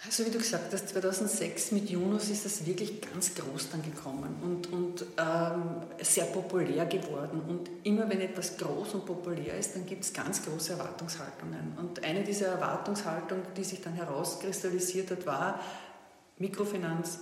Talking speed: 160 wpm